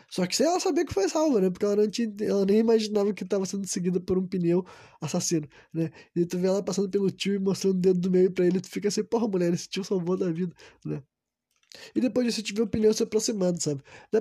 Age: 20-39